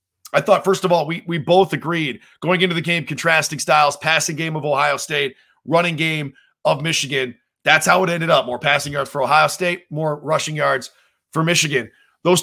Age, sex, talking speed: 30-49, male, 200 wpm